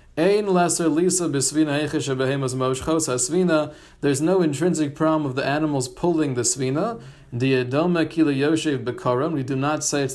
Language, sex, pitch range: English, male, 125-160 Hz